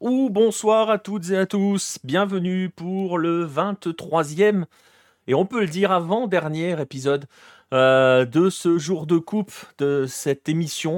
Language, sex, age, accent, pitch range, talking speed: French, male, 30-49, French, 125-170 Hz, 155 wpm